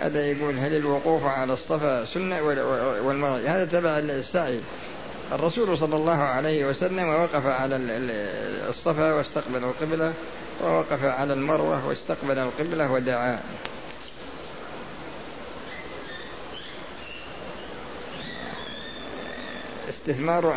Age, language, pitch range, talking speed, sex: 50-69, Arabic, 135-155 Hz, 80 wpm, male